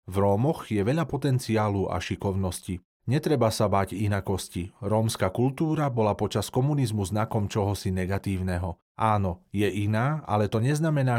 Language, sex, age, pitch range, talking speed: Slovak, male, 40-59, 95-125 Hz, 135 wpm